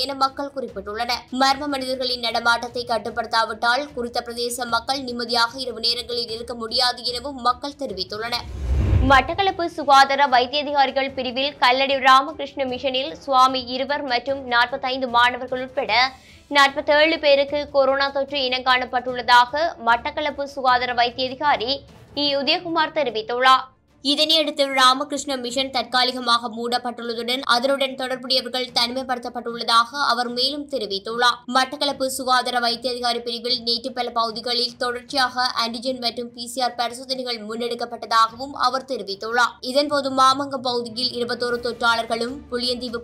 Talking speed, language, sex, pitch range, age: 105 wpm, English, male, 240-275 Hz, 20-39